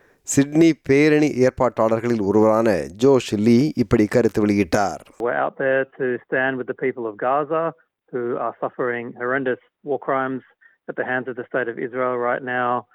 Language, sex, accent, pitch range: Tamil, male, native, 110-130 Hz